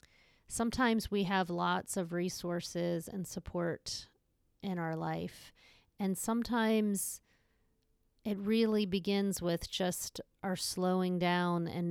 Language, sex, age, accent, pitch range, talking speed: English, female, 30-49, American, 175-200 Hz, 110 wpm